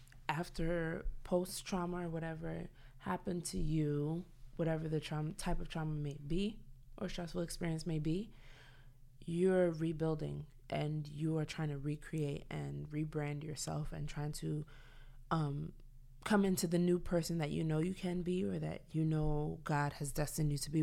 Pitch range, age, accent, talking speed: 145-175 Hz, 20-39, American, 160 wpm